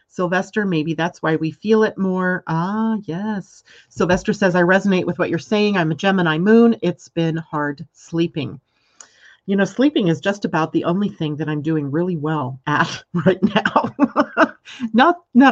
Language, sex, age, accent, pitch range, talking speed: English, female, 40-59, American, 155-205 Hz, 170 wpm